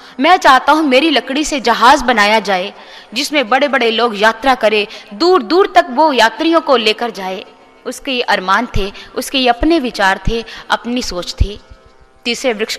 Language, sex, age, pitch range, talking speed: Hindi, female, 20-39, 215-290 Hz, 175 wpm